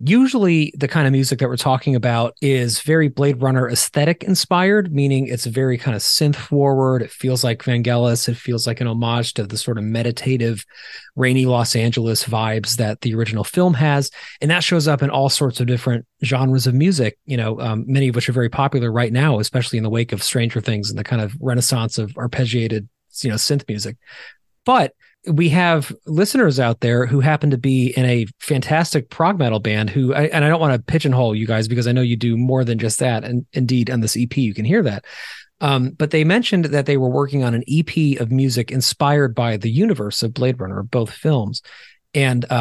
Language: English